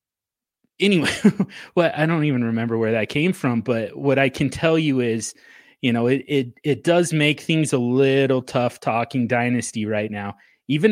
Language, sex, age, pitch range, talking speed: English, male, 20-39, 115-145 Hz, 180 wpm